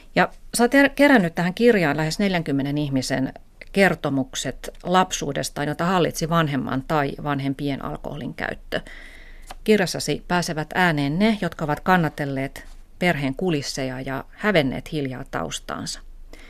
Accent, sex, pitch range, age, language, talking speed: native, female, 140-175 Hz, 30-49, Finnish, 105 wpm